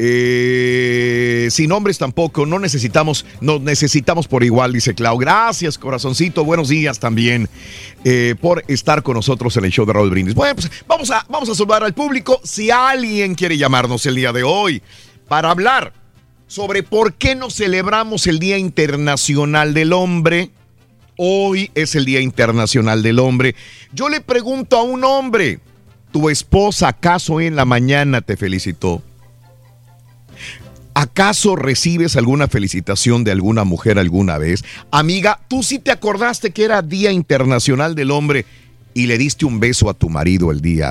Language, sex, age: Spanish, male, 50-69